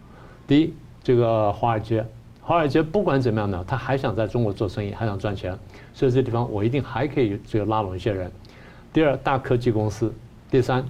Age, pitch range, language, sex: 50-69, 115-135 Hz, Chinese, male